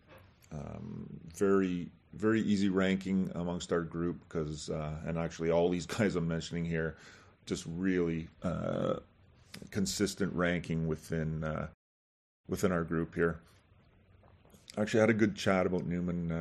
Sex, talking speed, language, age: male, 140 wpm, English, 40-59